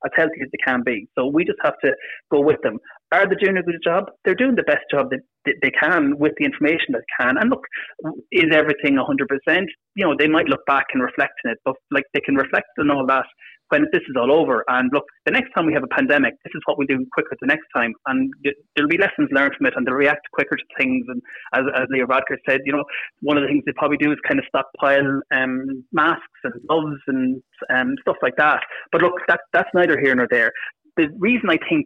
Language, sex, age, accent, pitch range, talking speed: English, male, 30-49, Irish, 130-195 Hz, 250 wpm